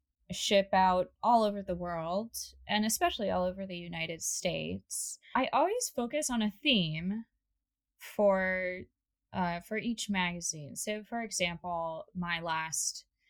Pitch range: 175-220 Hz